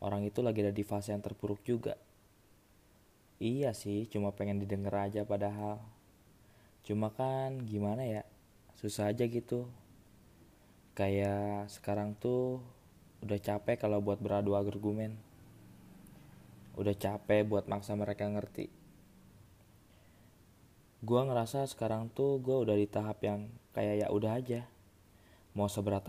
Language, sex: Indonesian, male